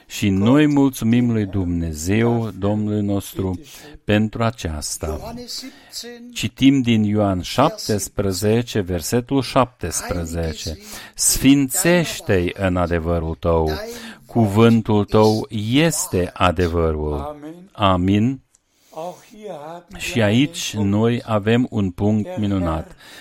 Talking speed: 80 wpm